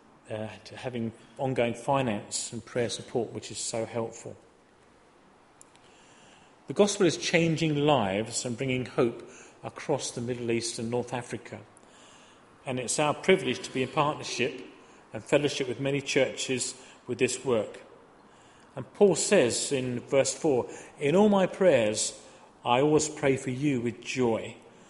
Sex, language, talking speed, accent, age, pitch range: male, English, 145 wpm, British, 40-59, 120-145 Hz